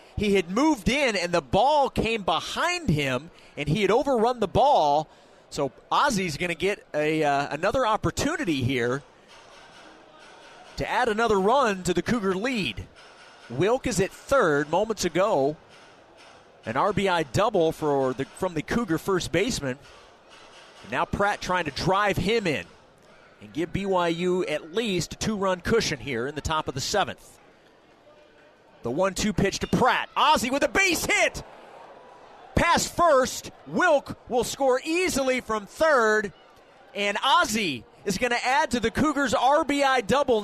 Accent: American